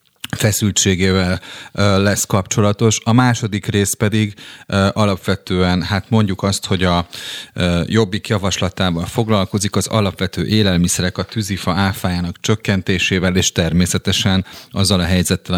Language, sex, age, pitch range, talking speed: Hungarian, male, 30-49, 90-110 Hz, 110 wpm